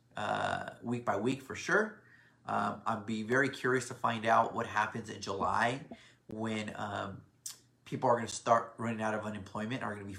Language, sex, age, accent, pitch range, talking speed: English, male, 30-49, American, 105-130 Hz, 200 wpm